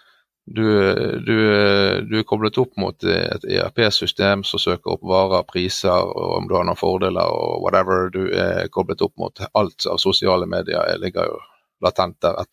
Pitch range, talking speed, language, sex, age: 100-130 Hz, 165 wpm, English, male, 30-49